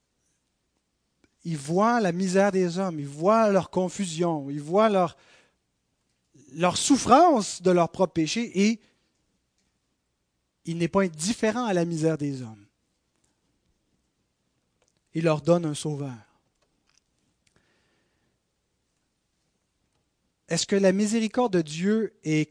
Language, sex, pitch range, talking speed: French, male, 165-220 Hz, 110 wpm